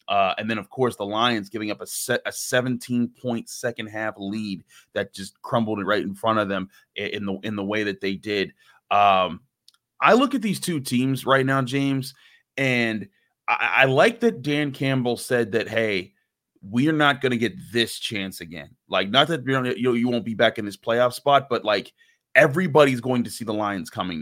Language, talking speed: English, 210 wpm